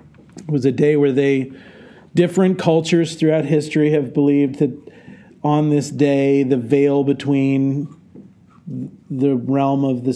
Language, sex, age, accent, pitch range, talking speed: English, male, 40-59, American, 135-170 Hz, 135 wpm